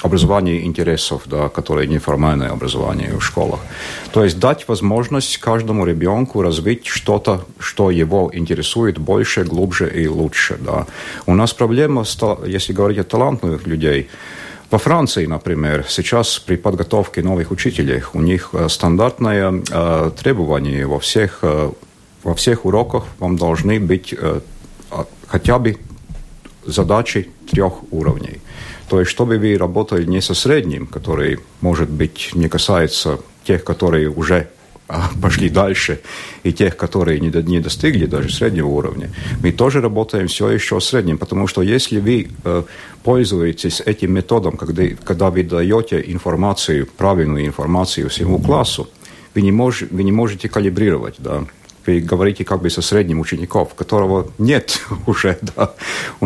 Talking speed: 130 wpm